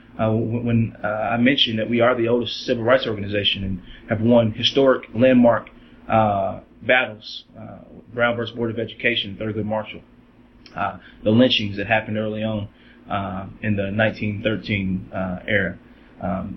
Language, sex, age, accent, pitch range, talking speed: English, male, 30-49, American, 105-120 Hz, 150 wpm